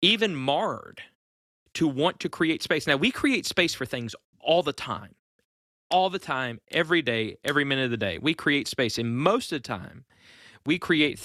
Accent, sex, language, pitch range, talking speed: American, male, English, 115-145 Hz, 190 wpm